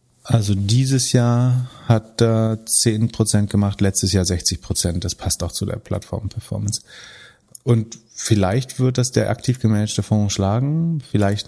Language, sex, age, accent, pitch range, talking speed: German, male, 30-49, German, 95-120 Hz, 135 wpm